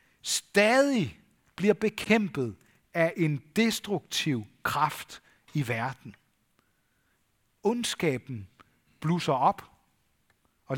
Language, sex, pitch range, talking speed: Danish, male, 125-195 Hz, 70 wpm